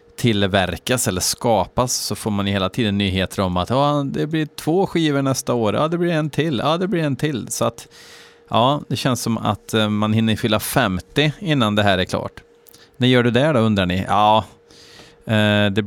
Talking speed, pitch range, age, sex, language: 220 wpm, 100-135 Hz, 30-49, male, Swedish